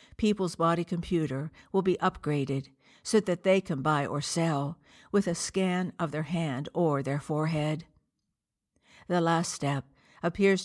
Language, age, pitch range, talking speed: English, 60-79, 145-180 Hz, 145 wpm